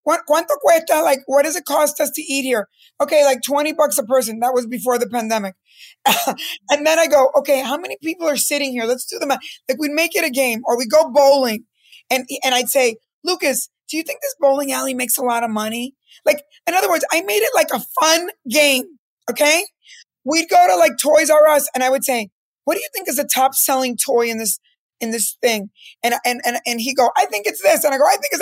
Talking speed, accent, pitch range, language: 240 wpm, American, 255-310 Hz, English